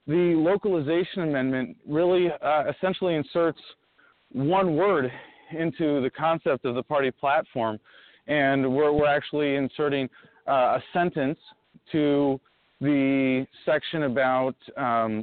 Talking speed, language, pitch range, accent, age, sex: 115 wpm, English, 125-165 Hz, American, 40-59, male